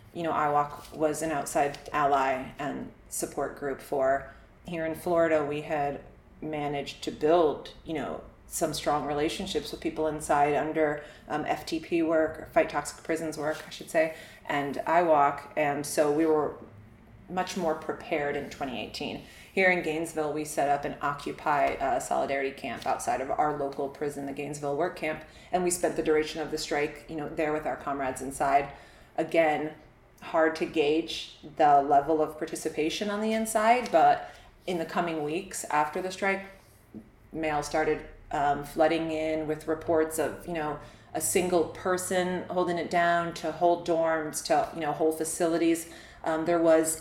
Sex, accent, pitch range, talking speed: female, American, 150-170 Hz, 165 wpm